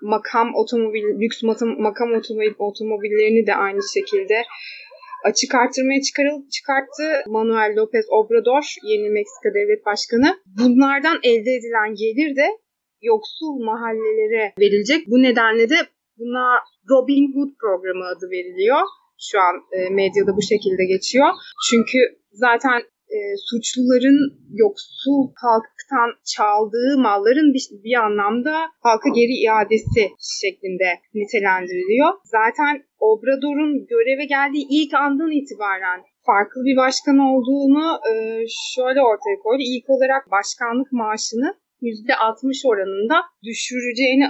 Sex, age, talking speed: female, 30-49, 110 wpm